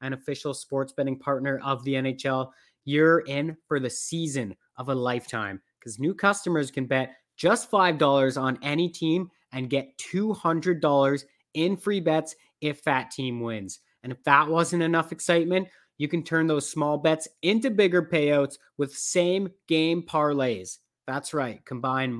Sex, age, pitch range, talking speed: male, 30-49, 135-170 Hz, 155 wpm